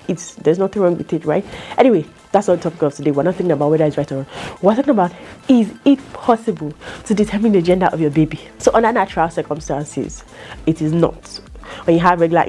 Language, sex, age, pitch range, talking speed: English, female, 30-49, 150-190 Hz, 220 wpm